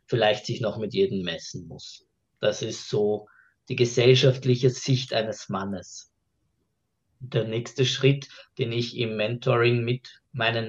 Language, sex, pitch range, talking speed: German, male, 105-130 Hz, 135 wpm